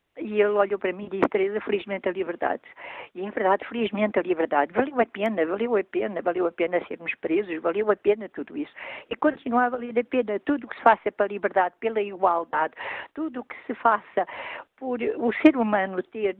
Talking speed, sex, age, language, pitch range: 210 wpm, female, 50-69, Portuguese, 180-245 Hz